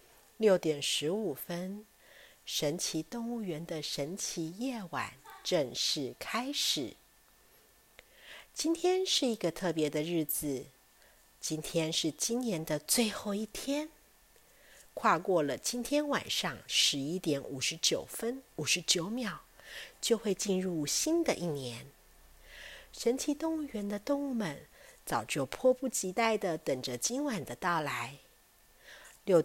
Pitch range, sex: 160-250 Hz, female